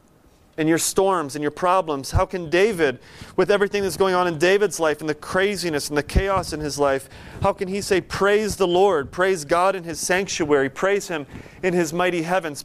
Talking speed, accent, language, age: 210 wpm, American, English, 30-49